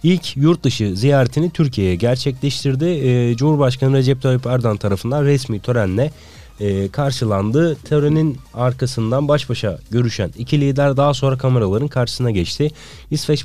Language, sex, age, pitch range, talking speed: Turkish, male, 30-49, 110-145 Hz, 125 wpm